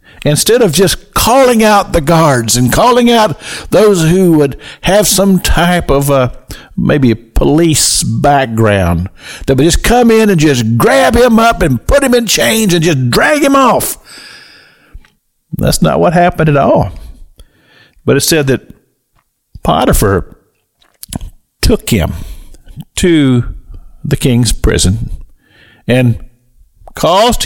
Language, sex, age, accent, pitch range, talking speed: English, male, 50-69, American, 115-180 Hz, 135 wpm